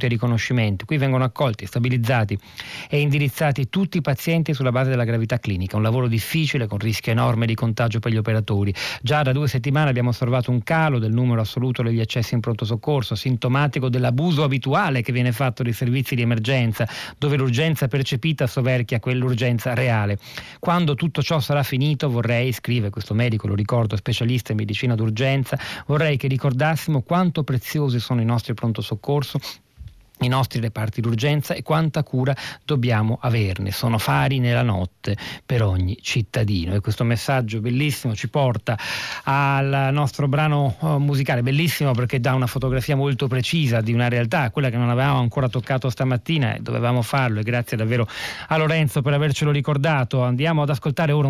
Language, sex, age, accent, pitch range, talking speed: Italian, male, 40-59, native, 115-140 Hz, 165 wpm